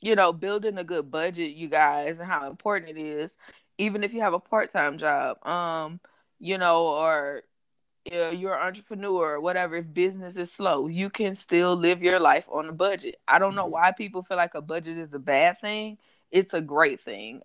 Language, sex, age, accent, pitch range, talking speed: English, female, 20-39, American, 165-200 Hz, 210 wpm